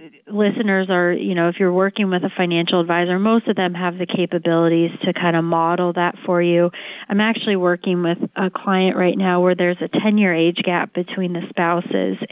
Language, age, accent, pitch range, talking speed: English, 30-49, American, 175-205 Hz, 200 wpm